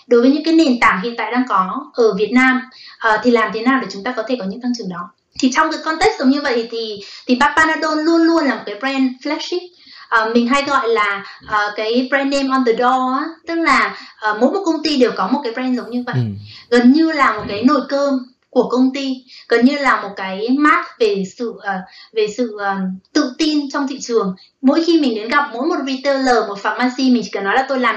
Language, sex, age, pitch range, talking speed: Vietnamese, female, 20-39, 225-280 Hz, 240 wpm